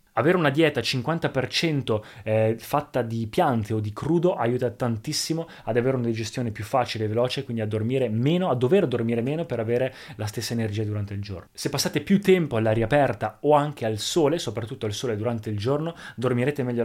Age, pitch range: 20-39, 110-135 Hz